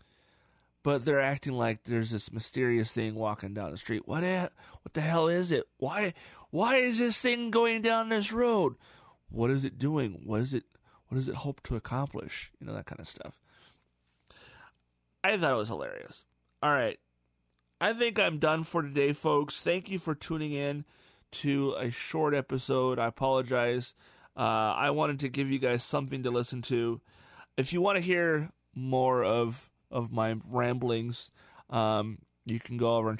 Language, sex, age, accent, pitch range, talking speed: English, male, 30-49, American, 105-140 Hz, 180 wpm